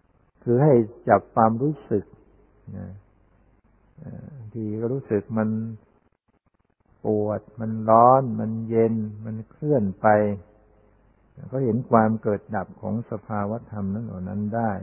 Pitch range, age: 105-115 Hz, 60-79